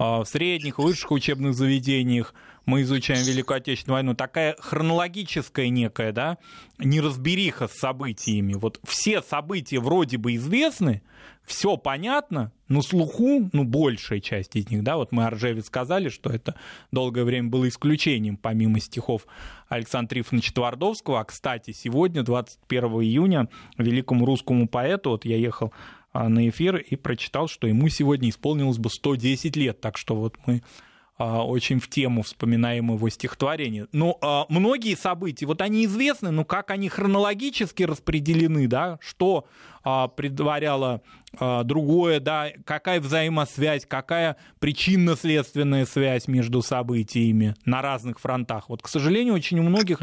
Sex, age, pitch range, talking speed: male, 20-39, 120-165 Hz, 140 wpm